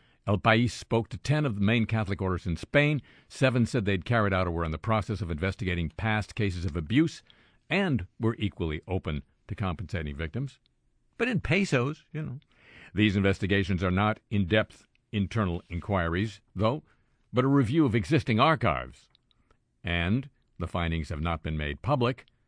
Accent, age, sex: American, 50-69, male